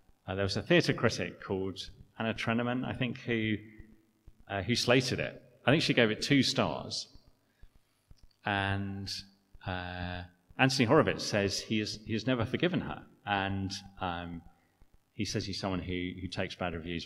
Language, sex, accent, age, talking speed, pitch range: English, male, British, 30-49, 160 wpm, 90-125 Hz